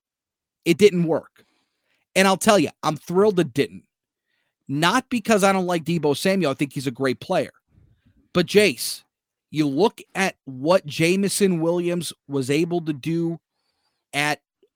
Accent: American